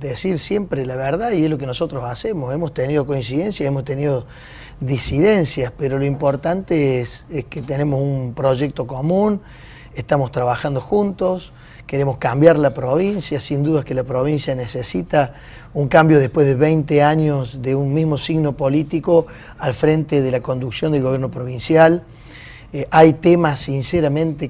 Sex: male